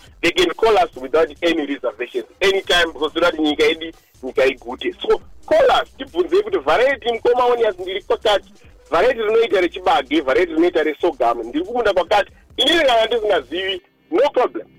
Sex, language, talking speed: male, English, 95 wpm